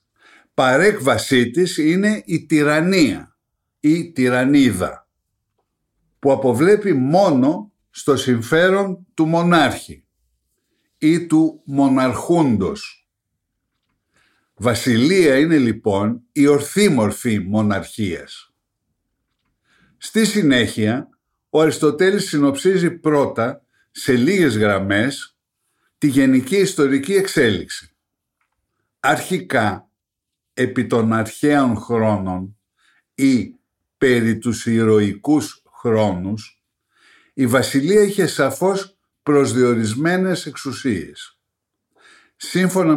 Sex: male